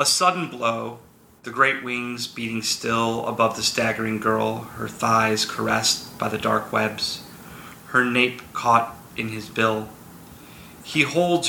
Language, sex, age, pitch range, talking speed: English, male, 30-49, 110-125 Hz, 140 wpm